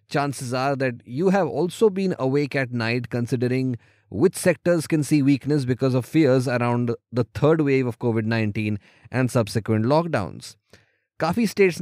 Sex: male